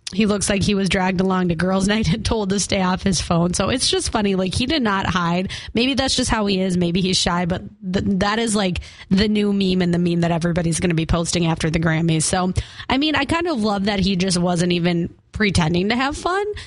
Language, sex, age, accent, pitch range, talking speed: English, female, 20-39, American, 175-225 Hz, 250 wpm